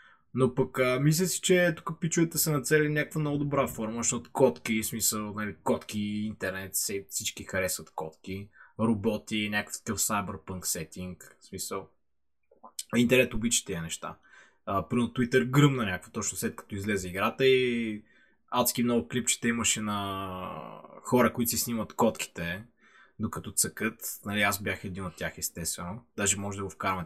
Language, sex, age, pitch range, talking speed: Bulgarian, male, 20-39, 90-125 Hz, 155 wpm